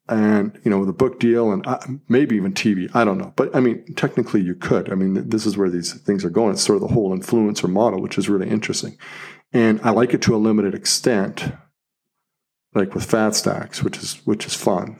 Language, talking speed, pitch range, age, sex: English, 220 wpm, 105-155 Hz, 40-59, male